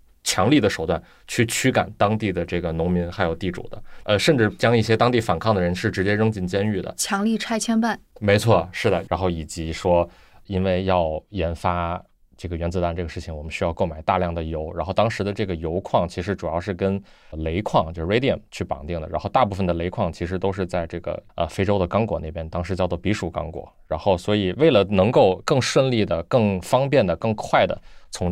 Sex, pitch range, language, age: male, 85-100 Hz, Chinese, 20-39